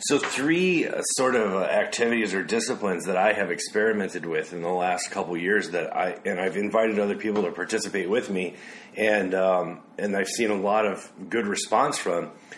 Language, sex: English, male